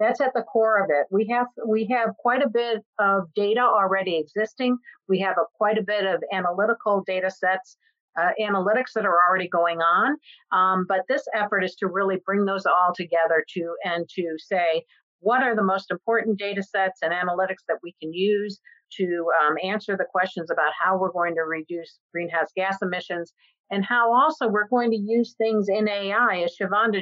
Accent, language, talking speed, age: American, English, 195 wpm, 50-69